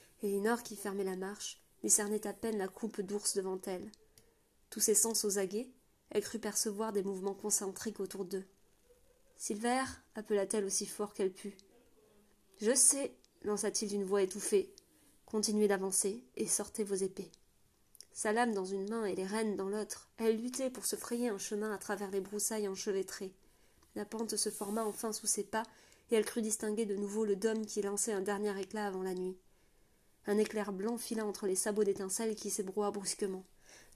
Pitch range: 200-220 Hz